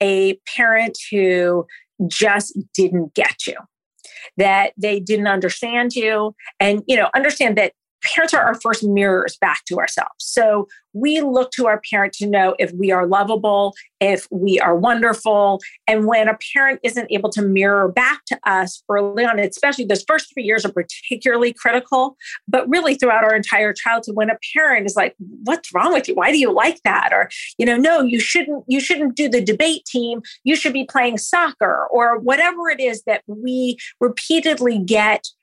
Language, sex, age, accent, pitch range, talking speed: English, female, 40-59, American, 205-255 Hz, 180 wpm